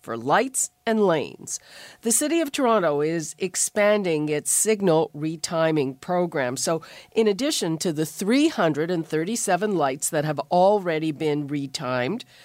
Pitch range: 160-215 Hz